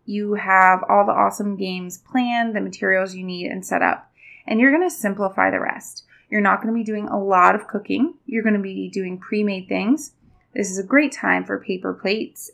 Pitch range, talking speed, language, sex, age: 185-225 Hz, 220 wpm, English, female, 20-39